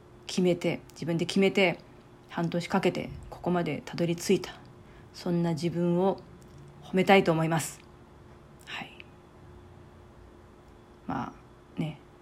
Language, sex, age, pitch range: Japanese, female, 40-59, 170-215 Hz